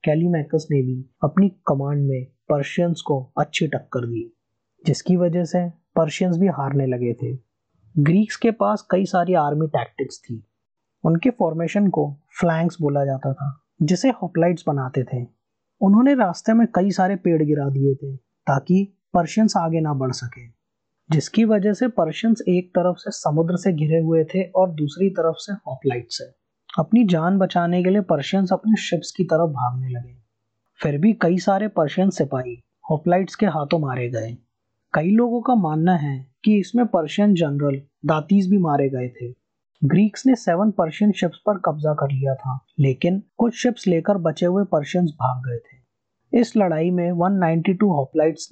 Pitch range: 140-190 Hz